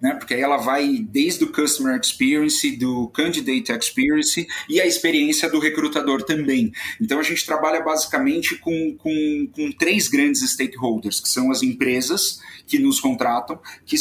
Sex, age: male, 40-59